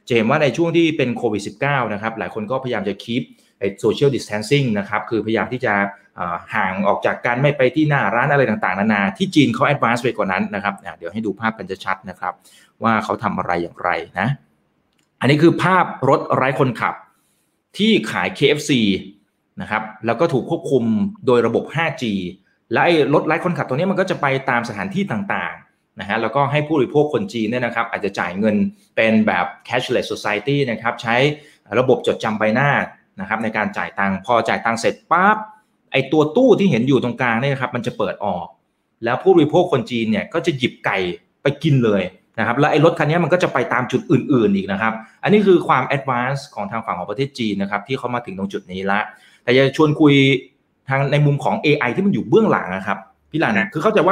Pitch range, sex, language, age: 105-150 Hz, male, Thai, 30-49